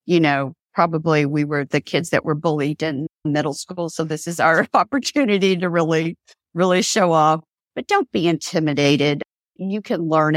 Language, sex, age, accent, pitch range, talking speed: English, female, 50-69, American, 145-175 Hz, 175 wpm